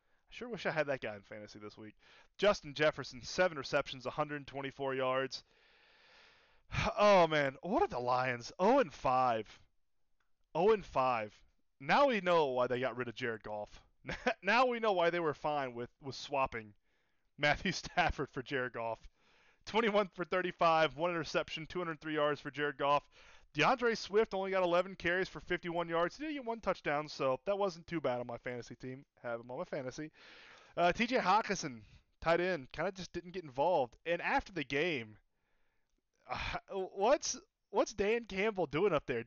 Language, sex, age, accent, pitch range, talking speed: English, male, 20-39, American, 135-190 Hz, 170 wpm